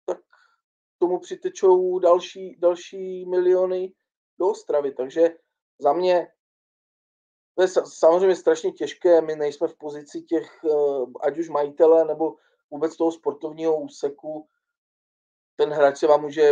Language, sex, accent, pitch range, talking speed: Czech, male, native, 145-185 Hz, 125 wpm